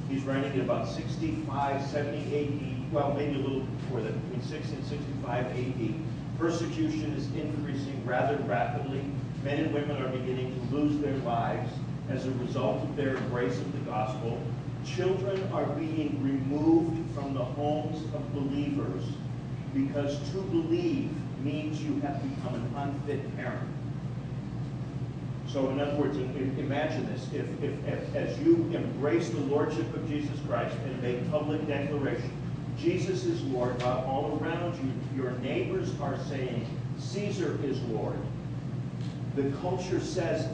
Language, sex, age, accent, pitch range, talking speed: English, male, 40-59, American, 130-145 Hz, 145 wpm